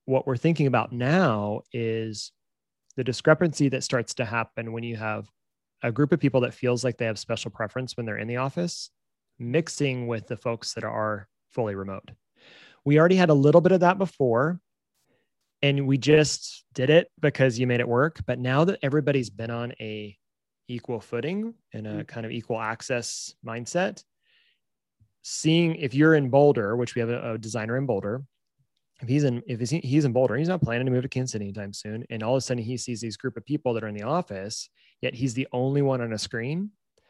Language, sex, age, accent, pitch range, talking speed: English, male, 30-49, American, 115-140 Hz, 205 wpm